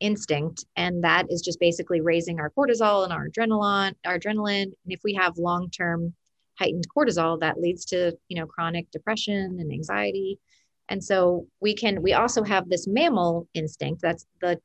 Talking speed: 170 wpm